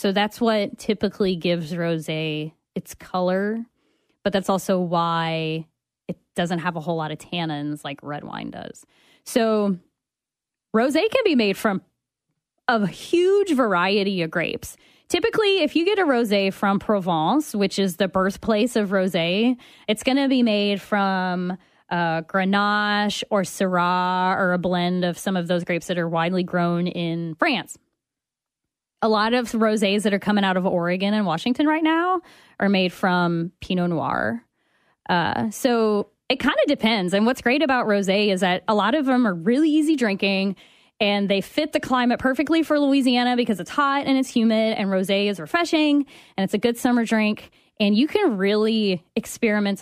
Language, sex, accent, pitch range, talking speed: English, female, American, 180-245 Hz, 170 wpm